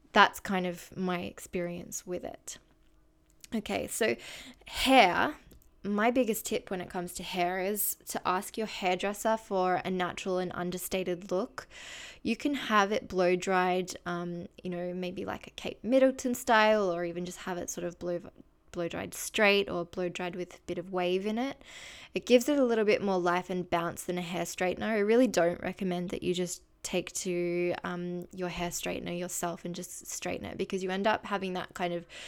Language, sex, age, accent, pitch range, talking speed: English, female, 10-29, Australian, 175-215 Hz, 195 wpm